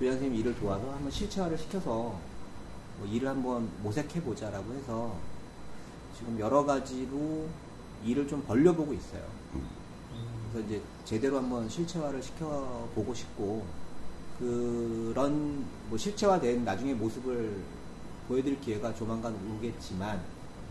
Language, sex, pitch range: Korean, male, 105-145 Hz